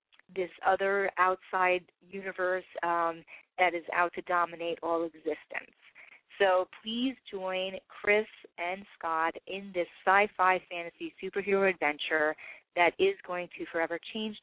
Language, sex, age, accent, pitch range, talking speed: English, female, 30-49, American, 165-190 Hz, 125 wpm